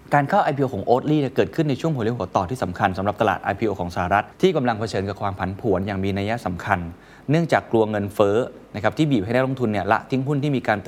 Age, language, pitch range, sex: 20-39, Thai, 95-135 Hz, male